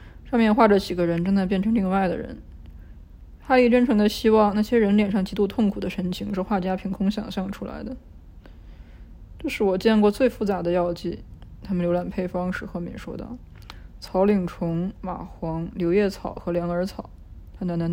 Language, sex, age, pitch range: Chinese, female, 20-39, 175-215 Hz